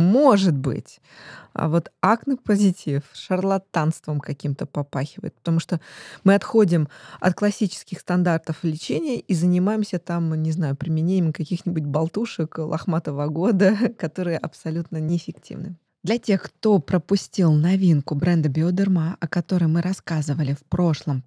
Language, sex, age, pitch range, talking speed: Russian, female, 20-39, 155-195 Hz, 120 wpm